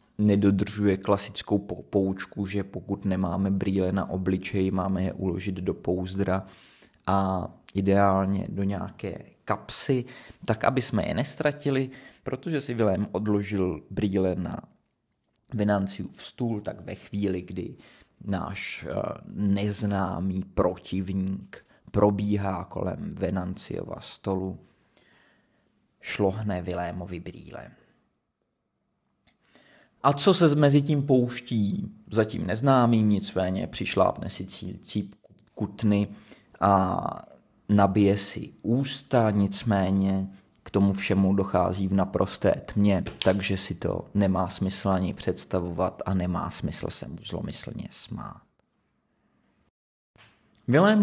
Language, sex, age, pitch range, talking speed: Czech, male, 30-49, 95-105 Hz, 100 wpm